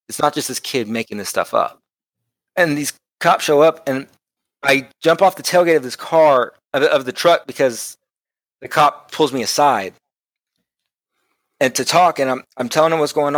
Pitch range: 120-150 Hz